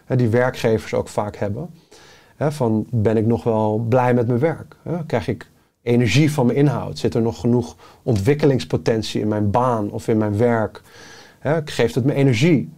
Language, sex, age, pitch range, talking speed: Dutch, male, 30-49, 115-150 Hz, 170 wpm